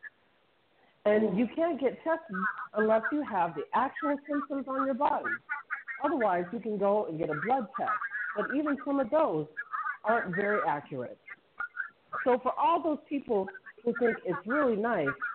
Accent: American